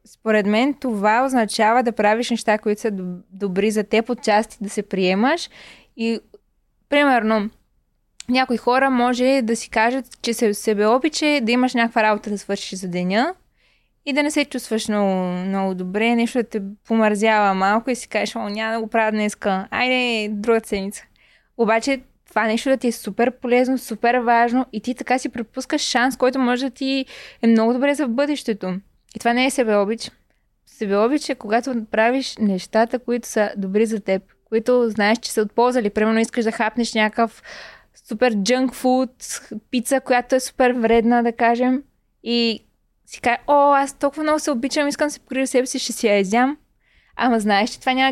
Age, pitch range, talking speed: 20-39, 215-255 Hz, 185 wpm